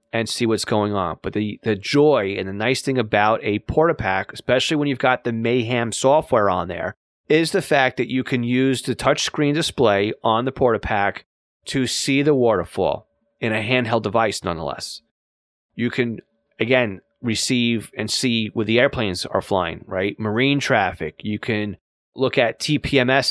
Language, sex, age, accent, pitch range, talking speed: English, male, 30-49, American, 110-135 Hz, 175 wpm